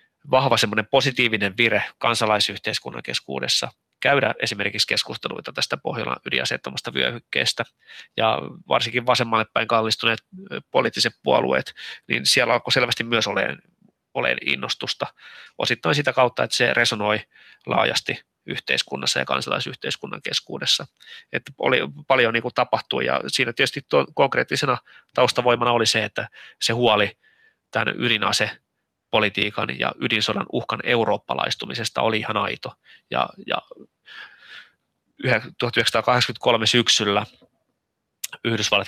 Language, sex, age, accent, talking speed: Finnish, male, 20-39, native, 105 wpm